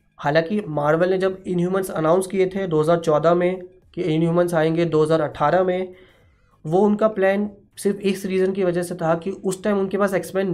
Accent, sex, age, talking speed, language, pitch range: native, male, 20-39, 180 wpm, Hindi, 160-190 Hz